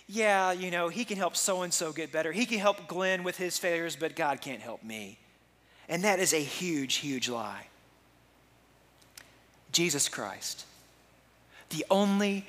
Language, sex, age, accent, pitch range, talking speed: English, male, 40-59, American, 125-210 Hz, 155 wpm